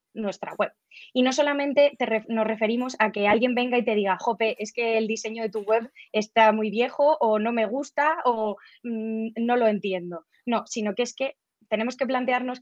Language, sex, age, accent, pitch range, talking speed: Spanish, female, 20-39, Spanish, 215-240 Hz, 205 wpm